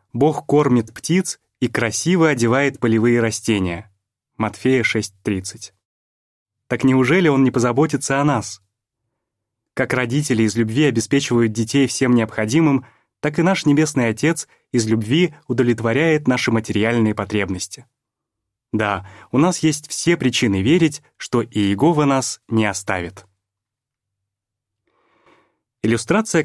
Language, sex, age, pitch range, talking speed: Russian, male, 20-39, 105-135 Hz, 110 wpm